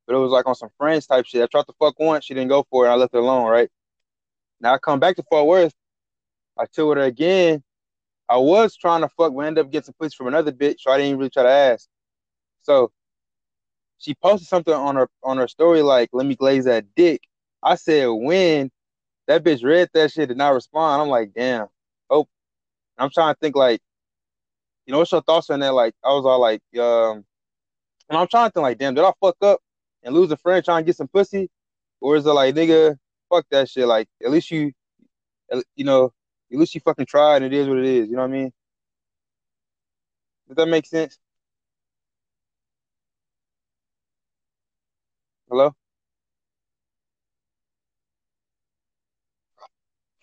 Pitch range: 120-160 Hz